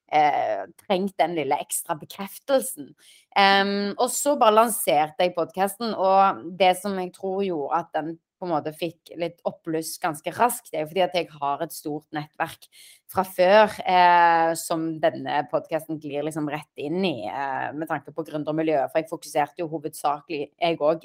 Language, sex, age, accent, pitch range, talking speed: English, female, 30-49, Swedish, 160-200 Hz, 170 wpm